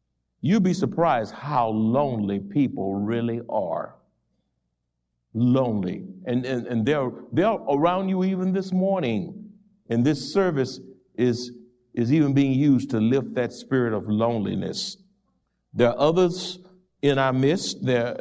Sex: male